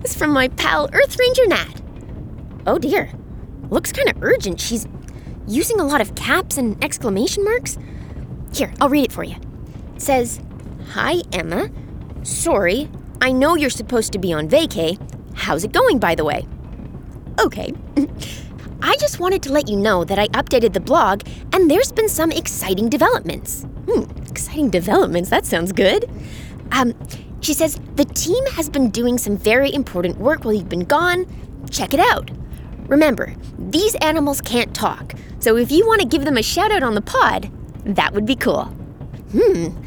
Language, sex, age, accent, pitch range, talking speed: English, female, 20-39, American, 225-375 Hz, 170 wpm